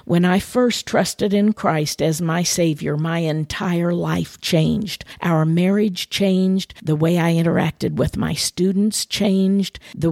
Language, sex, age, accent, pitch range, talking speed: English, female, 50-69, American, 160-190 Hz, 150 wpm